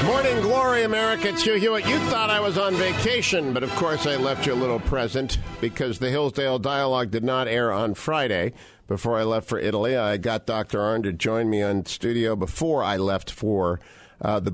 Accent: American